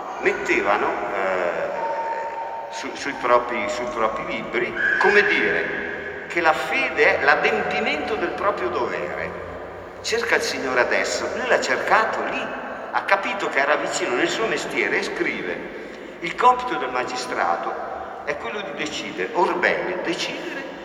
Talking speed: 130 wpm